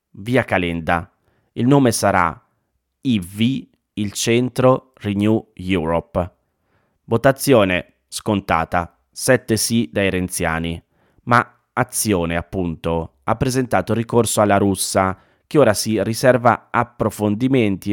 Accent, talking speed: native, 95 wpm